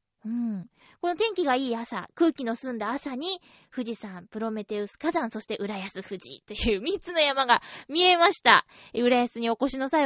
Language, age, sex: Japanese, 20-39, female